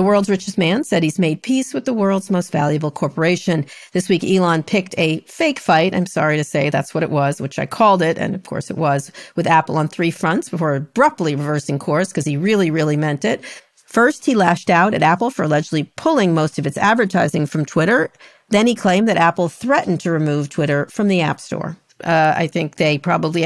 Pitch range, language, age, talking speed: 150-185 Hz, English, 50-69, 220 wpm